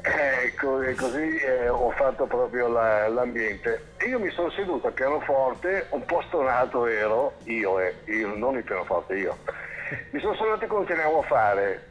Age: 60-79